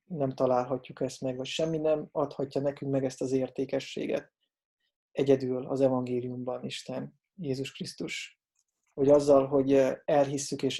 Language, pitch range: Hungarian, 130-150 Hz